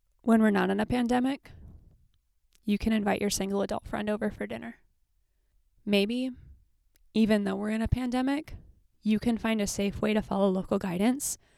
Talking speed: 170 wpm